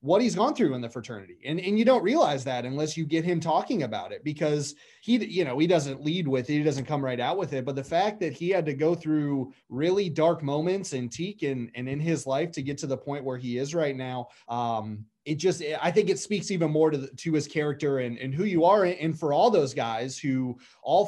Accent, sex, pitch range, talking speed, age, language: American, male, 130-165 Hz, 260 wpm, 30-49, English